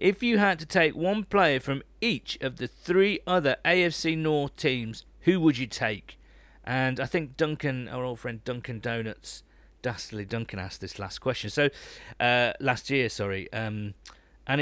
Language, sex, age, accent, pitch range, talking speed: English, male, 40-59, British, 110-140 Hz, 170 wpm